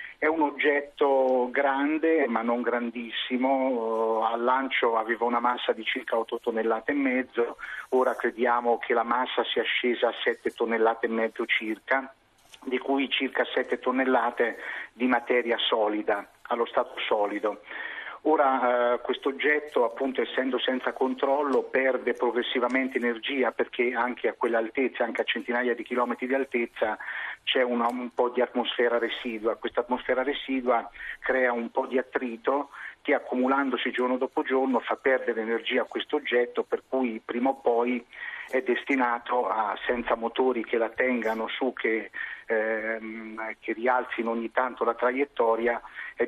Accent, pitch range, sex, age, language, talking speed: native, 115-130 Hz, male, 40-59, Italian, 145 wpm